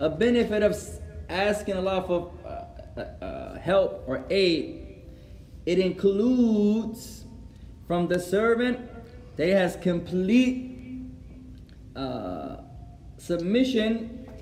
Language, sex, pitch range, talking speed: English, male, 160-220 Hz, 90 wpm